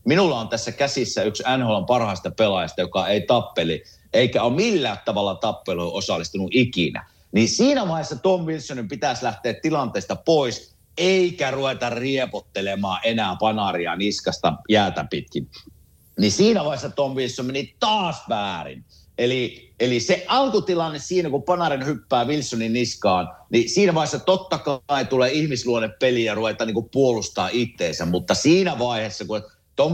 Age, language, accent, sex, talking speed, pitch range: 50-69, Finnish, native, male, 145 wpm, 105-150 Hz